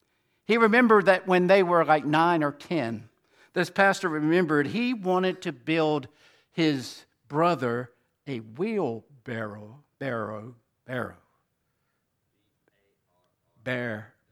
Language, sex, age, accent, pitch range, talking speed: English, male, 60-79, American, 130-210 Hz, 100 wpm